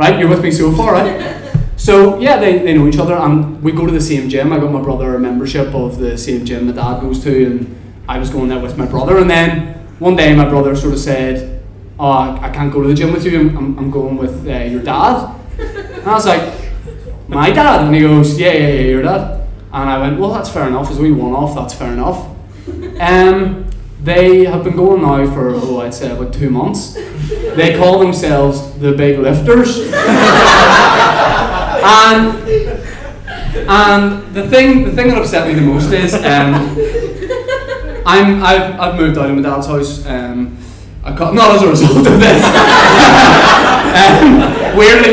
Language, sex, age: English, male, 20-39